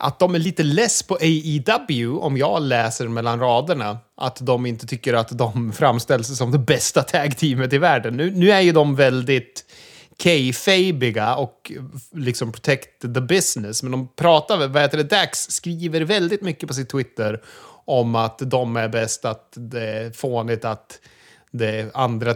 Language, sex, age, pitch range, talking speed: Swedish, male, 30-49, 115-135 Hz, 165 wpm